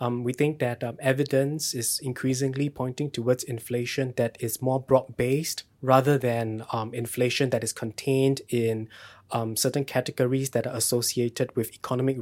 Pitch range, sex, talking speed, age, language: 115-135 Hz, male, 150 wpm, 20-39, English